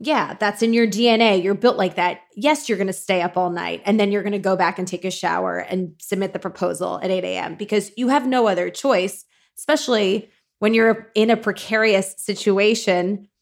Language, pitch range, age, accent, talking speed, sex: English, 195-230 Hz, 20-39, American, 215 wpm, female